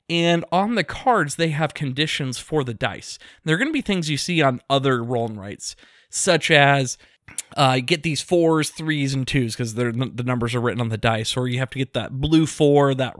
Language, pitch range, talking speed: English, 130-170 Hz, 225 wpm